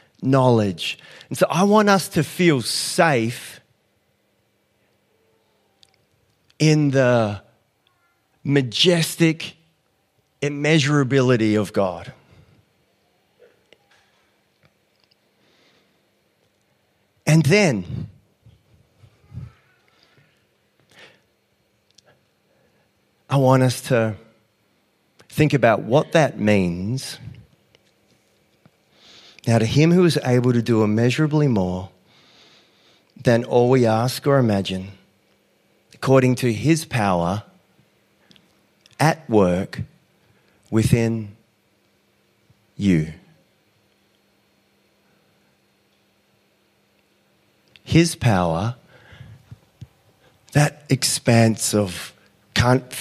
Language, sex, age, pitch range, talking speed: English, male, 40-59, 105-140 Hz, 65 wpm